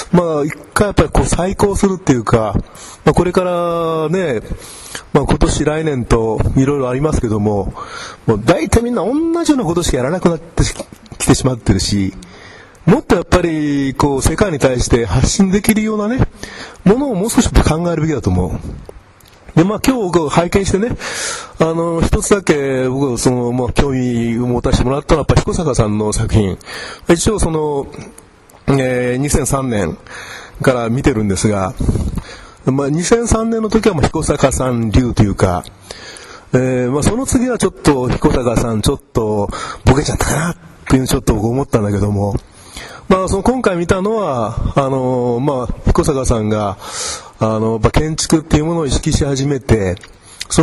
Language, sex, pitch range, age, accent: Japanese, male, 115-165 Hz, 40-59, native